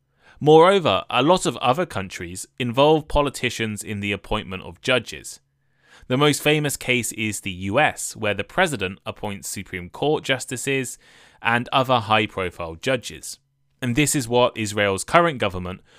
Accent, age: British, 20-39